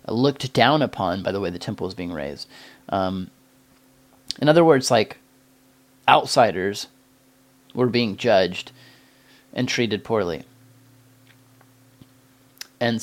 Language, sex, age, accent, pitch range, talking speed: English, male, 30-49, American, 110-130 Hz, 110 wpm